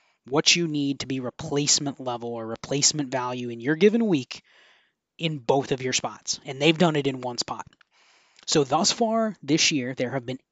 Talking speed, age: 195 wpm, 20-39